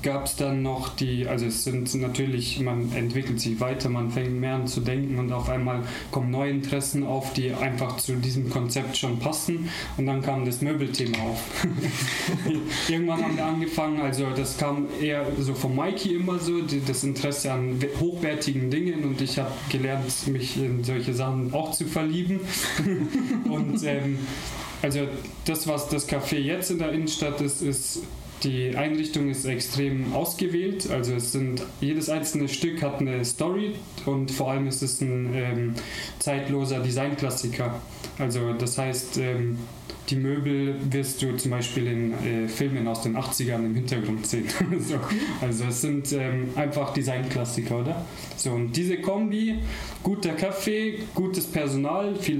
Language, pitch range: German, 125-155 Hz